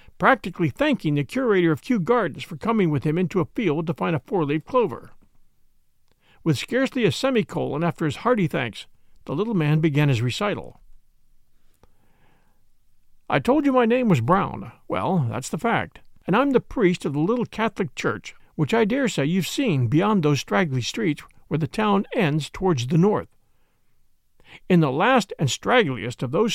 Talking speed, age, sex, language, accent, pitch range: 175 wpm, 50-69, male, English, American, 150-220 Hz